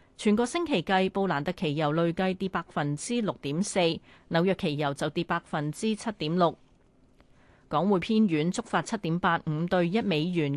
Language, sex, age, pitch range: Chinese, female, 30-49, 165-215 Hz